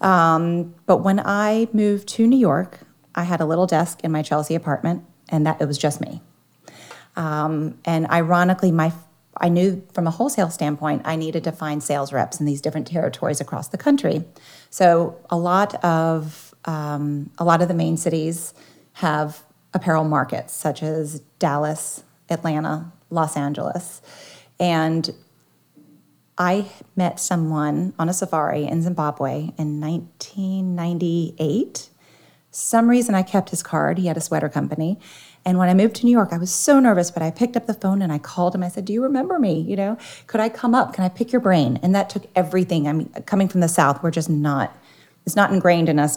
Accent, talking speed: American, 185 wpm